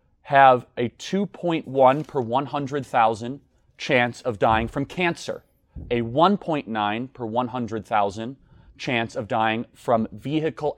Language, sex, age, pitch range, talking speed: English, male, 30-49, 115-155 Hz, 105 wpm